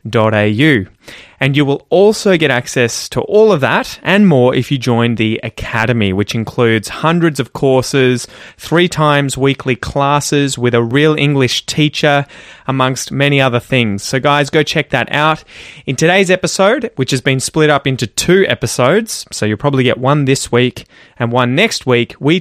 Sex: male